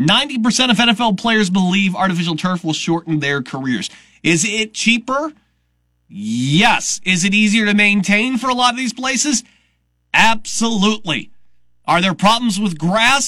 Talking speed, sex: 145 wpm, male